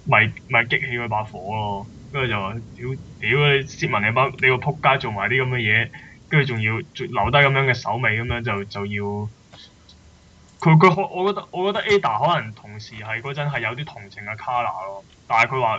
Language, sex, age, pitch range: Chinese, male, 20-39, 105-130 Hz